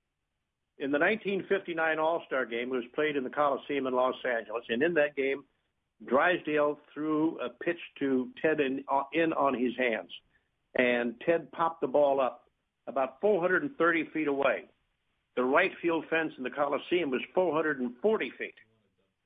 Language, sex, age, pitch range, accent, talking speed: English, male, 60-79, 125-160 Hz, American, 155 wpm